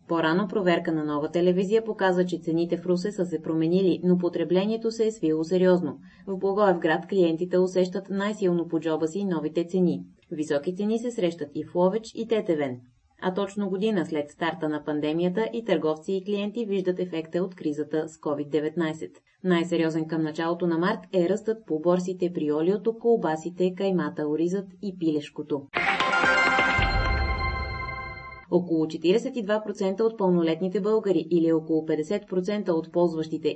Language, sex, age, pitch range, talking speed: Bulgarian, female, 20-39, 160-195 Hz, 145 wpm